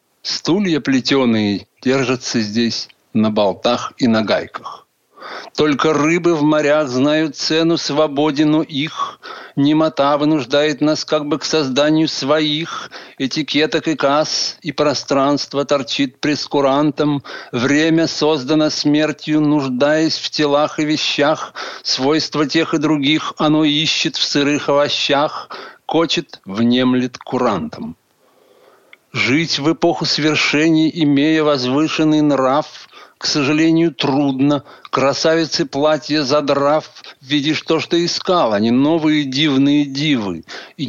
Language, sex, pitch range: Russian, male, 135-155 Hz